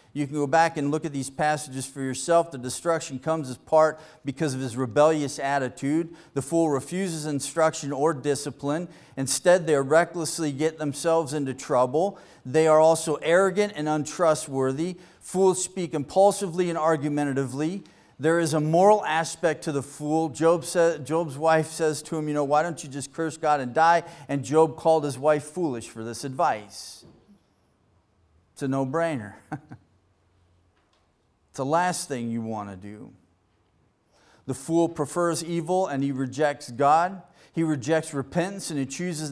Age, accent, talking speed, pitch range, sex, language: 40-59, American, 155 wpm, 130-165 Hz, male, English